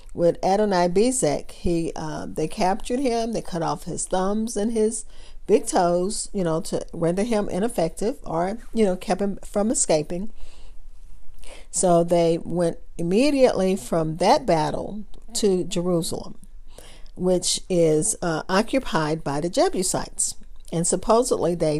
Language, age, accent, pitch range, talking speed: English, 40-59, American, 165-220 Hz, 130 wpm